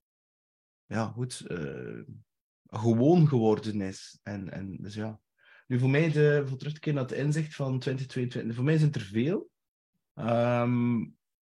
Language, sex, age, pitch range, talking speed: Dutch, male, 30-49, 105-125 Hz, 150 wpm